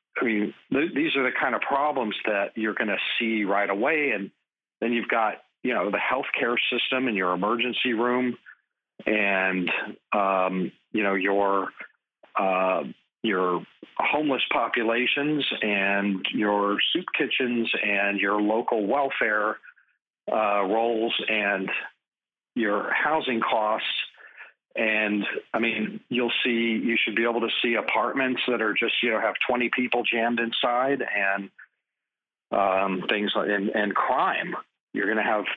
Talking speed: 145 wpm